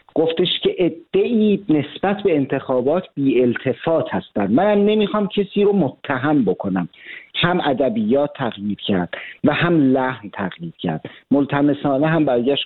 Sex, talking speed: male, 135 wpm